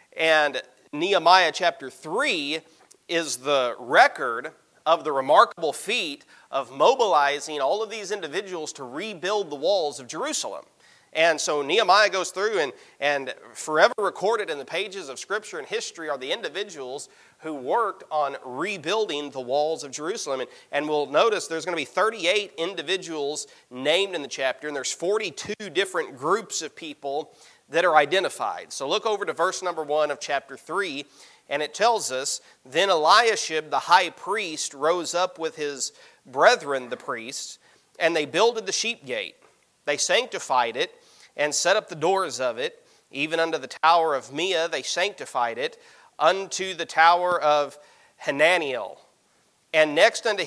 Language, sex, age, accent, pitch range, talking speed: English, male, 30-49, American, 150-215 Hz, 160 wpm